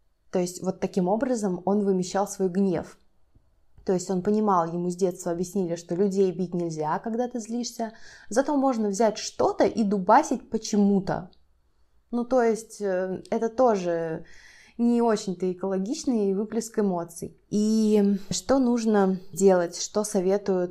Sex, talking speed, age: female, 135 wpm, 20-39